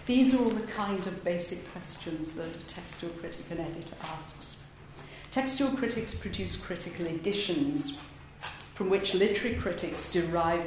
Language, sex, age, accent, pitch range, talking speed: English, female, 50-69, British, 170-220 Hz, 140 wpm